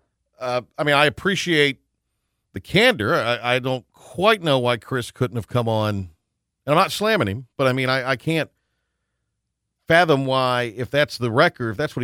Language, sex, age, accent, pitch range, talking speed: English, male, 40-59, American, 110-145 Hz, 190 wpm